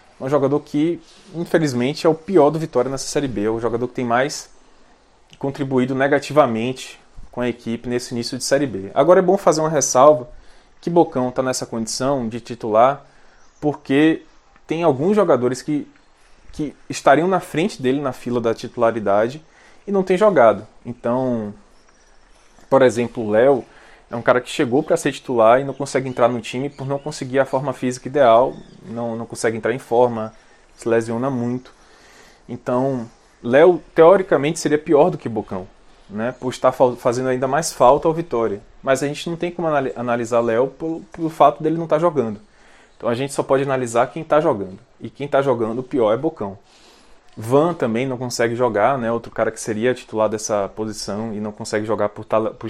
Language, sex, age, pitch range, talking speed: Portuguese, male, 20-39, 115-145 Hz, 180 wpm